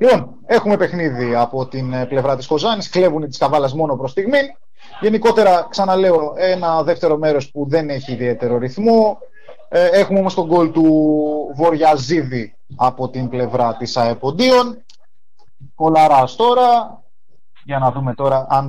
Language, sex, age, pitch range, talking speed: Greek, male, 30-49, 130-185 Hz, 160 wpm